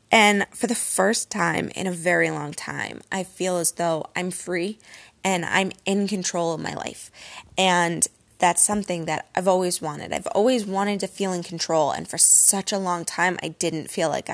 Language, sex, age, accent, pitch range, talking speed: English, female, 20-39, American, 170-210 Hz, 195 wpm